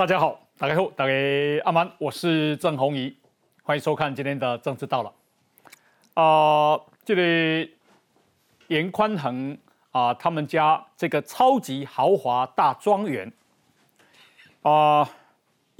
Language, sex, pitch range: Chinese, male, 145-195 Hz